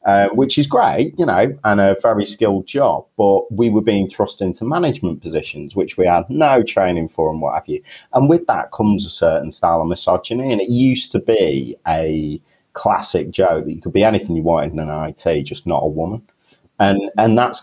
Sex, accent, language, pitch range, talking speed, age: male, British, English, 80-110 Hz, 215 wpm, 30-49